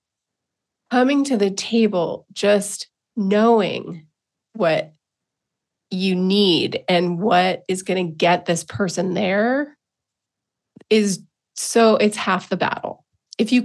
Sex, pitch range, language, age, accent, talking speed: female, 180-225 Hz, English, 30-49, American, 115 wpm